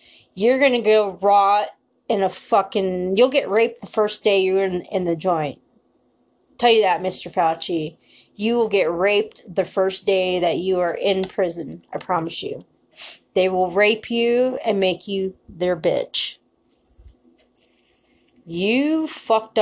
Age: 30-49